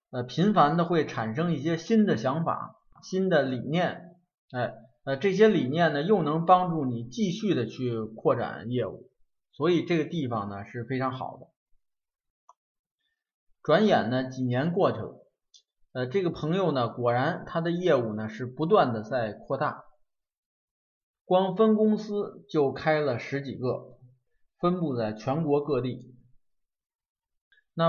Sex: male